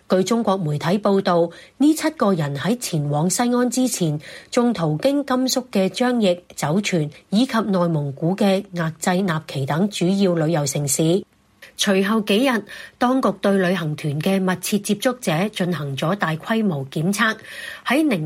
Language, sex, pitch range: Chinese, female, 165-220 Hz